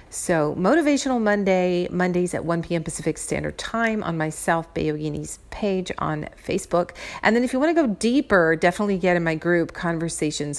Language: English